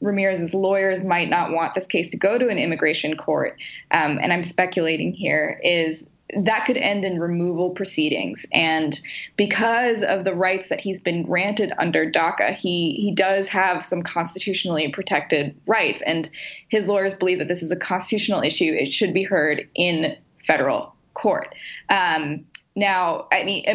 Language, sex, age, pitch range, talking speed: English, female, 20-39, 175-205 Hz, 165 wpm